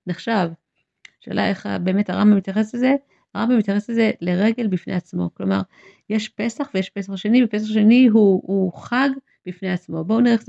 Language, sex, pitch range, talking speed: English, female, 185-220 Hz, 165 wpm